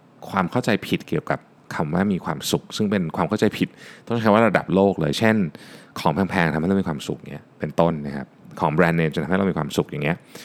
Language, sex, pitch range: Thai, male, 80-120 Hz